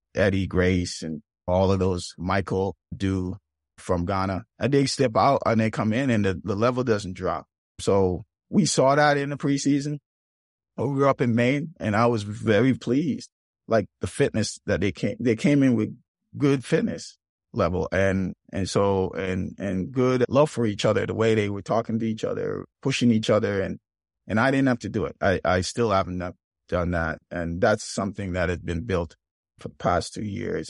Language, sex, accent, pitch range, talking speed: English, male, American, 90-120 Hz, 195 wpm